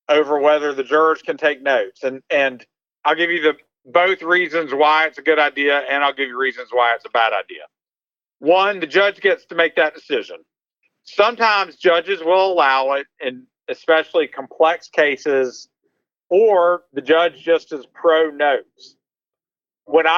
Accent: American